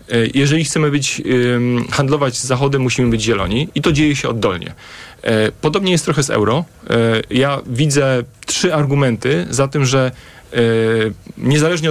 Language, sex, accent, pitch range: Polish, male, native, 120-150 Hz